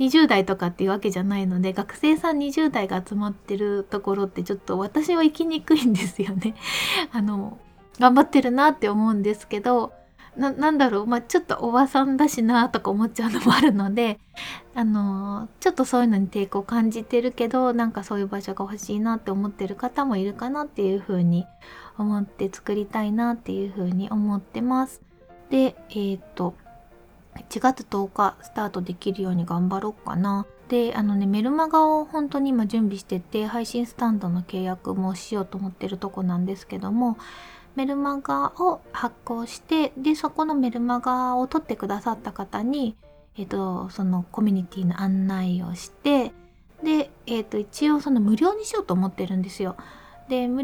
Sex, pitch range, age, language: female, 195-260 Hz, 20-39, Japanese